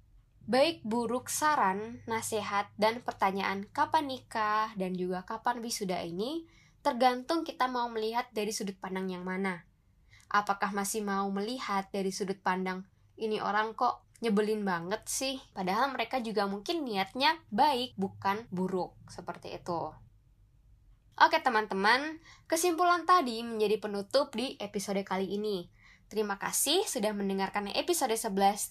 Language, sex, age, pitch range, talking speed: Indonesian, female, 10-29, 190-255 Hz, 130 wpm